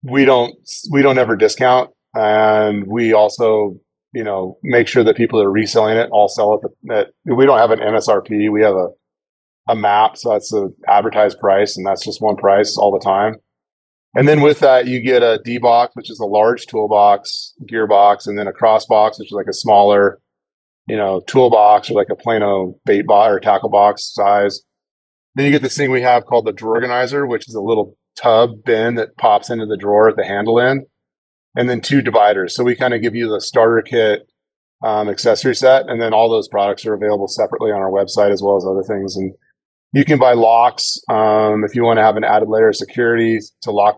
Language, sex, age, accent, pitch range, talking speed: English, male, 30-49, American, 100-120 Hz, 215 wpm